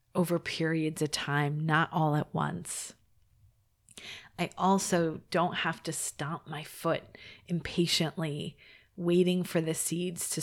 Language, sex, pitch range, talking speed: English, female, 145-185 Hz, 125 wpm